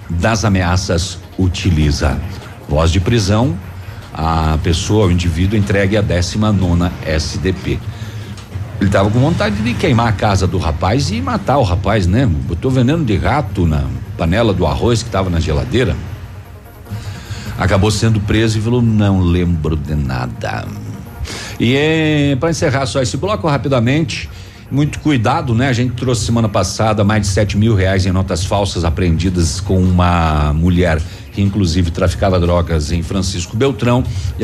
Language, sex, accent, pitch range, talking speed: Portuguese, male, Brazilian, 90-110 Hz, 150 wpm